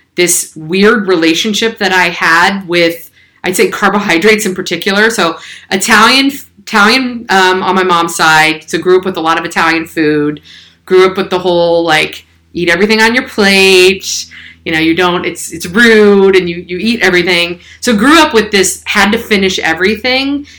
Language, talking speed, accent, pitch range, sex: English, 180 wpm, American, 170-200 Hz, female